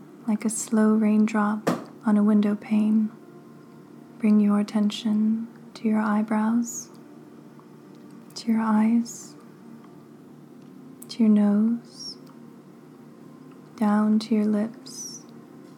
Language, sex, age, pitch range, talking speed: English, female, 30-49, 210-230 Hz, 90 wpm